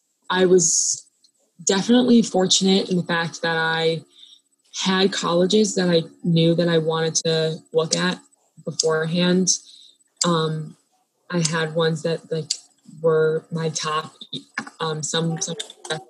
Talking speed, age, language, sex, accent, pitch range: 125 wpm, 20-39, English, female, American, 160-180 Hz